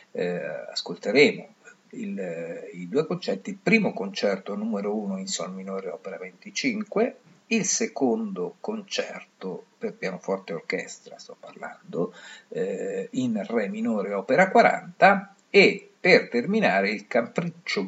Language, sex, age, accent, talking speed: Italian, male, 50-69, native, 125 wpm